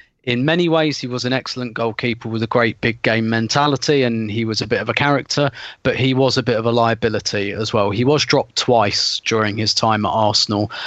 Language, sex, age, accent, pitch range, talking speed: English, male, 30-49, British, 115-135 Hz, 225 wpm